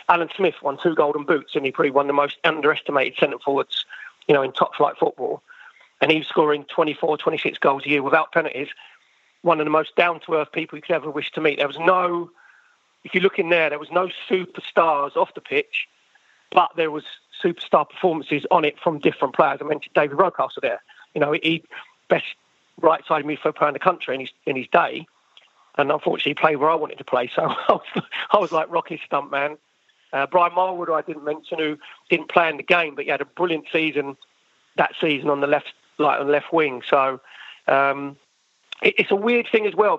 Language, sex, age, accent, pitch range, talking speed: English, male, 40-59, British, 150-180 Hz, 215 wpm